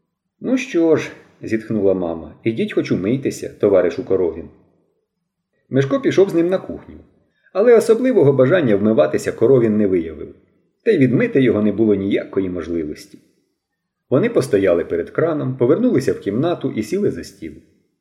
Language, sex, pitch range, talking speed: Ukrainian, male, 105-175 Hz, 145 wpm